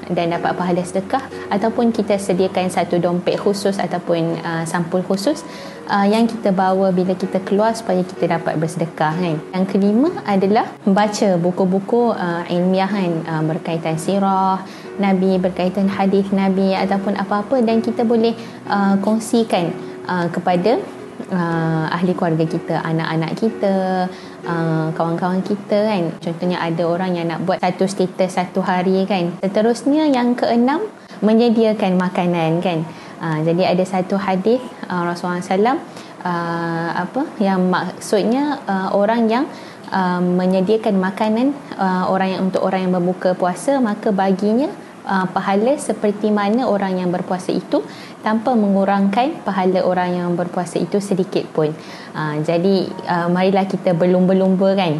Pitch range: 175-210 Hz